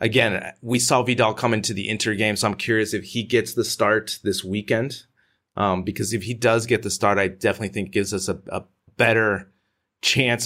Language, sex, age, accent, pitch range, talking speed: English, male, 30-49, American, 95-115 Hz, 205 wpm